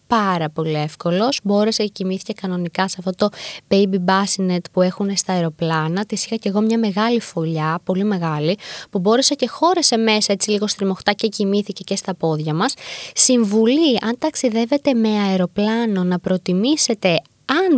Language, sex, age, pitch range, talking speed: Greek, female, 20-39, 185-245 Hz, 160 wpm